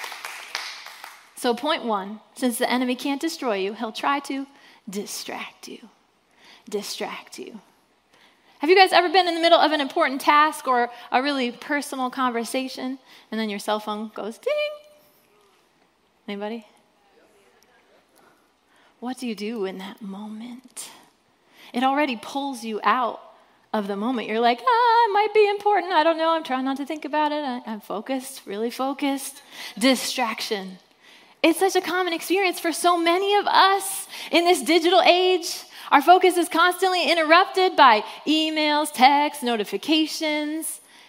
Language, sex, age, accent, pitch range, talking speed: English, female, 20-39, American, 235-330 Hz, 145 wpm